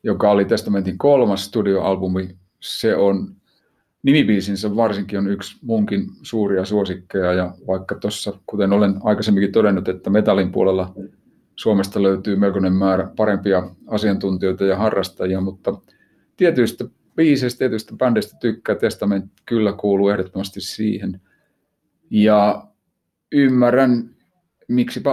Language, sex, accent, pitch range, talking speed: Finnish, male, native, 100-115 Hz, 110 wpm